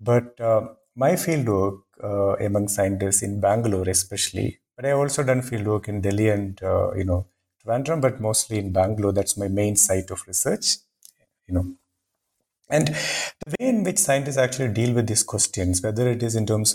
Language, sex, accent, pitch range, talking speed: English, male, Indian, 100-125 Hz, 180 wpm